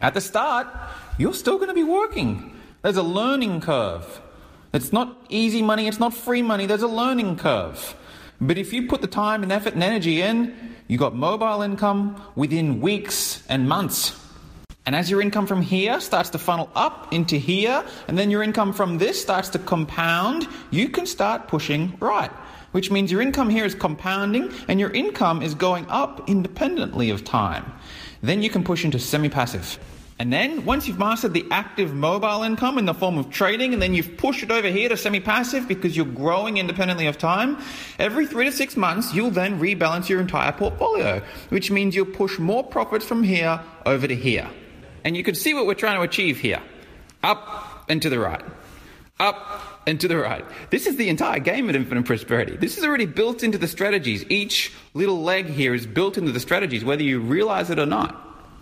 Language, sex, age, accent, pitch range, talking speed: English, male, 30-49, Australian, 165-225 Hz, 200 wpm